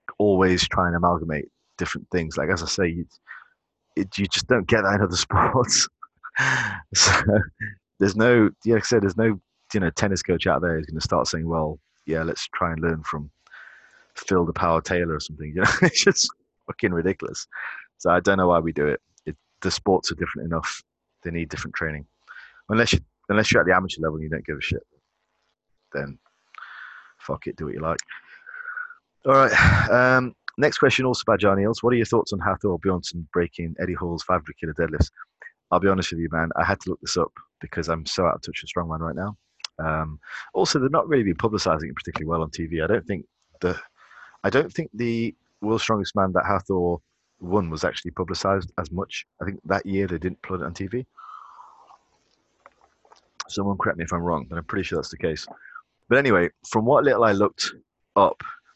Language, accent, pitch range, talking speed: English, British, 80-105 Hz, 210 wpm